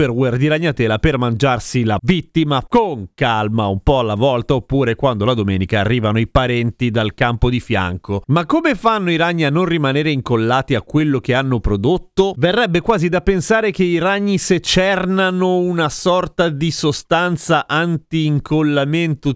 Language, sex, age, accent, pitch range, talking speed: Italian, male, 30-49, native, 125-175 Hz, 155 wpm